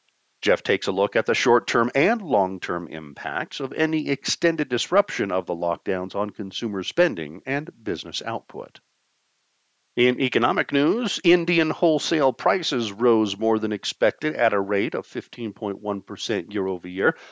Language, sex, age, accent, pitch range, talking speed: English, male, 50-69, American, 100-130 Hz, 135 wpm